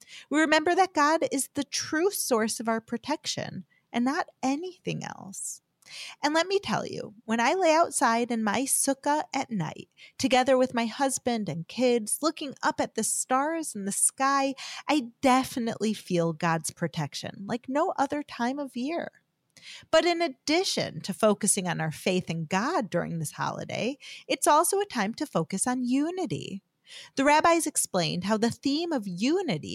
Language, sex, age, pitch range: English, female, 30-49, 210-305 Hz